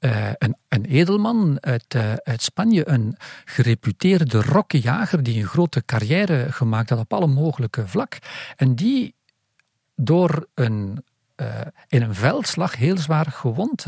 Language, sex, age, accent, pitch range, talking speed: Dutch, male, 50-69, Dutch, 125-185 Hz, 130 wpm